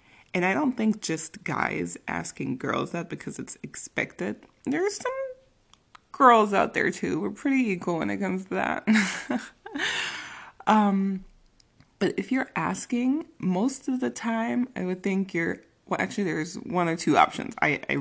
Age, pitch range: 20-39, 140-210 Hz